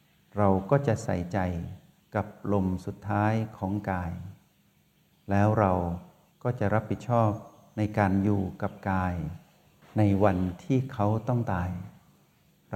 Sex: male